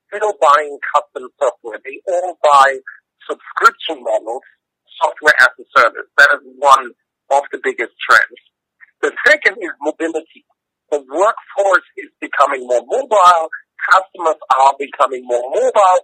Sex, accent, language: male, American, English